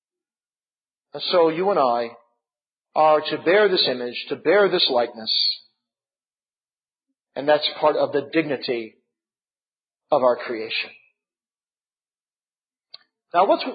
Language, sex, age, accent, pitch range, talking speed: English, male, 50-69, American, 155-260 Hz, 110 wpm